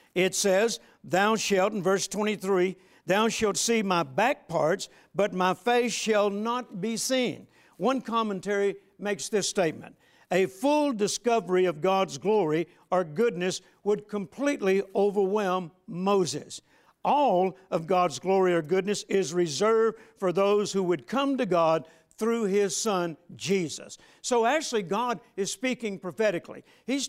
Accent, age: American, 60-79